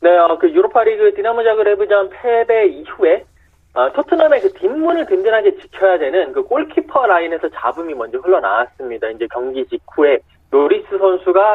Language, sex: Korean, male